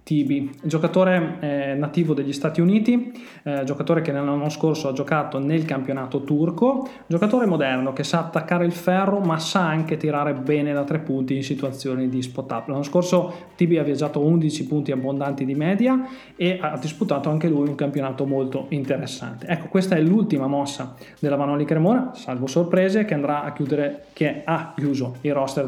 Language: Italian